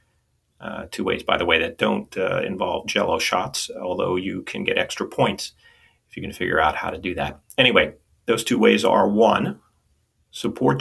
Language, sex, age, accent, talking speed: English, male, 40-59, American, 190 wpm